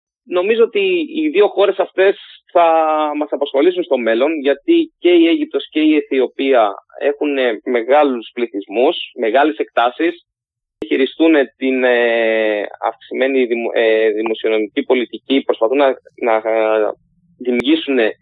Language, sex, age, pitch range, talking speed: Greek, male, 30-49, 125-175 Hz, 105 wpm